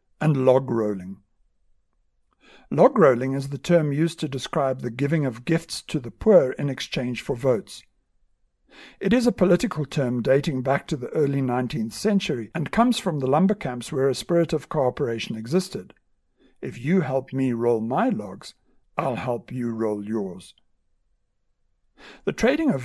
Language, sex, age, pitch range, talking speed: English, male, 60-79, 125-165 Hz, 160 wpm